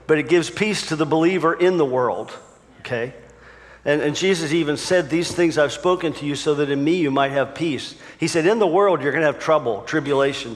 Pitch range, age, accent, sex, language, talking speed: 130-165 Hz, 50-69, American, male, English, 225 wpm